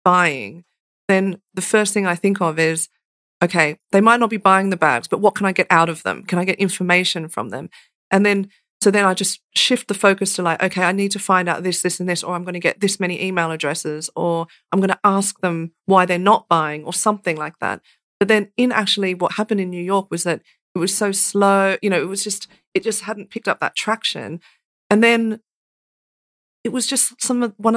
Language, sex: English, female